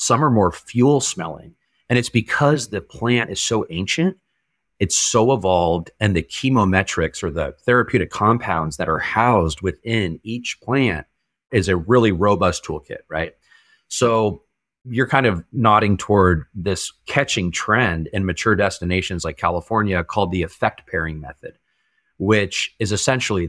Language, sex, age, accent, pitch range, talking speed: English, male, 30-49, American, 90-115 Hz, 145 wpm